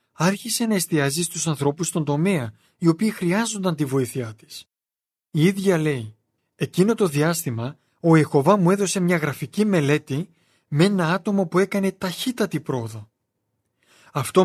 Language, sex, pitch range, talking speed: Greek, male, 135-180 Hz, 140 wpm